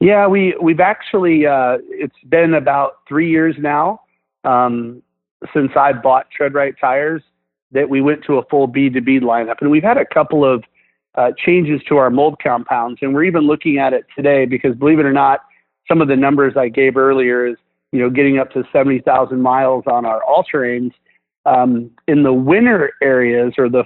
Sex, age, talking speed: male, 40-59, 195 wpm